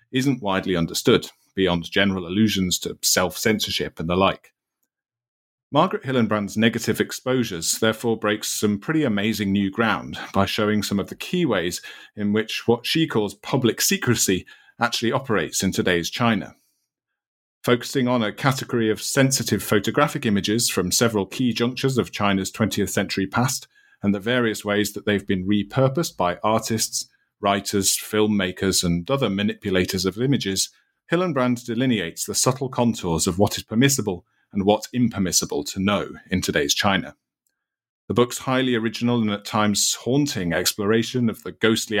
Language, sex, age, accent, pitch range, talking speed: English, male, 40-59, British, 100-120 Hz, 150 wpm